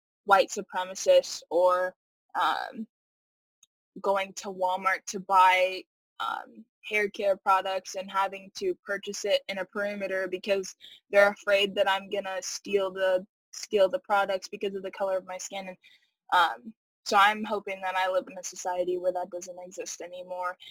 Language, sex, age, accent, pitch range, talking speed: English, female, 10-29, American, 185-205 Hz, 160 wpm